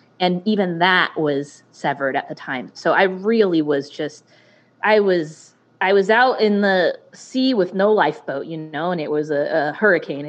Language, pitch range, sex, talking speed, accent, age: English, 155-205 Hz, female, 185 wpm, American, 20-39